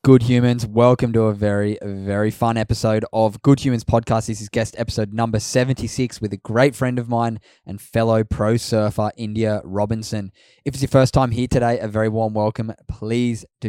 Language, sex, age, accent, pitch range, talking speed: English, male, 10-29, Australian, 105-120 Hz, 195 wpm